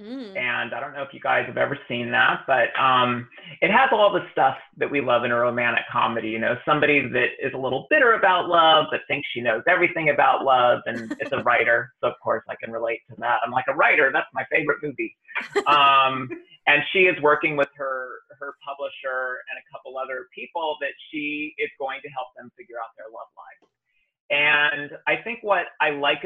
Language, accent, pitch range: English, American, 130-175 Hz